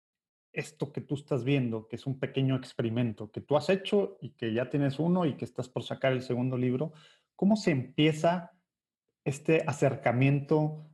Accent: Mexican